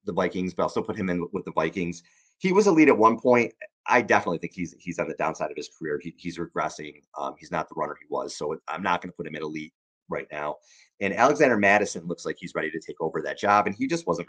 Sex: male